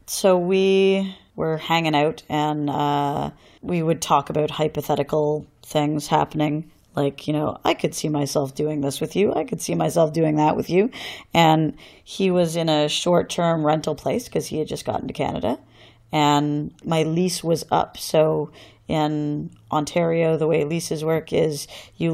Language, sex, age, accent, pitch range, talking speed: English, female, 30-49, American, 150-180 Hz, 170 wpm